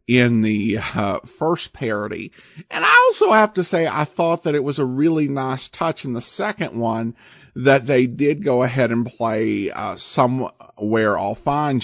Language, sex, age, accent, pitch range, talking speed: English, male, 50-69, American, 120-170 Hz, 175 wpm